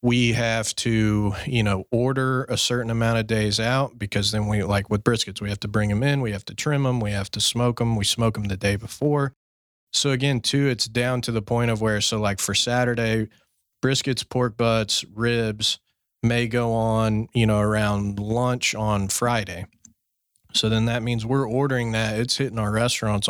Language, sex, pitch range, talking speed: English, male, 105-120 Hz, 200 wpm